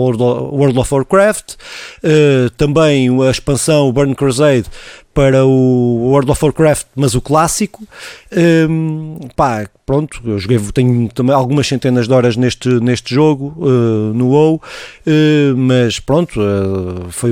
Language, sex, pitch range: Portuguese, male, 120-155 Hz